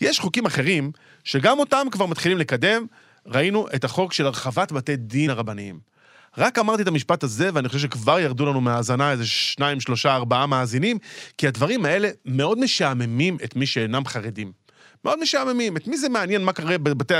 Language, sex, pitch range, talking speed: Hebrew, male, 135-190 Hz, 175 wpm